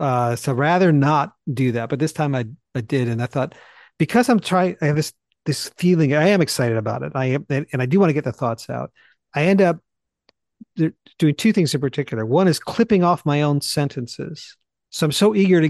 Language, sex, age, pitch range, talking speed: English, male, 50-69, 140-185 Hz, 225 wpm